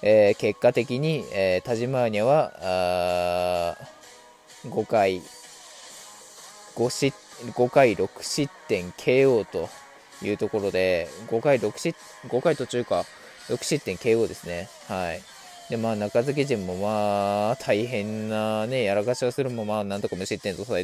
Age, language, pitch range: 20-39, Japanese, 100-130 Hz